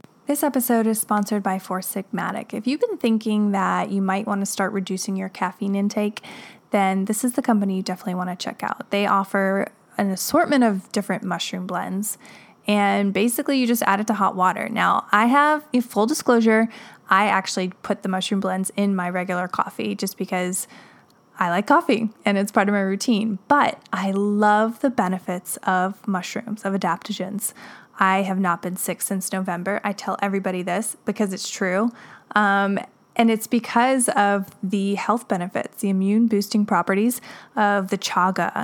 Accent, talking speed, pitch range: American, 175 wpm, 190-225 Hz